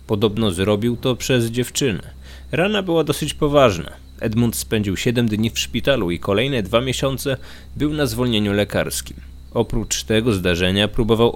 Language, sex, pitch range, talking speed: Polish, male, 95-125 Hz, 145 wpm